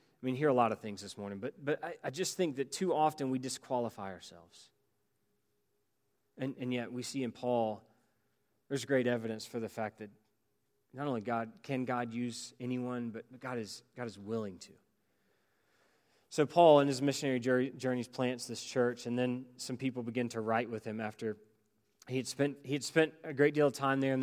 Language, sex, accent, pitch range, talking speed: English, male, American, 110-125 Hz, 205 wpm